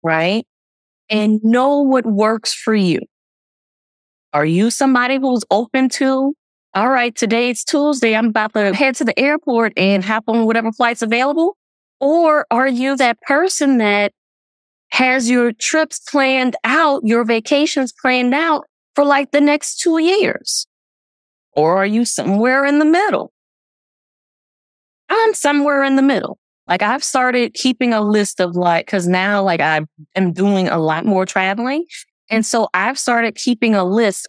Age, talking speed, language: 20-39, 155 wpm, English